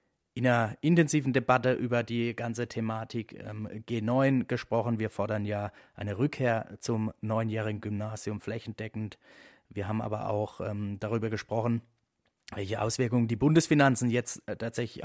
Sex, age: male, 30-49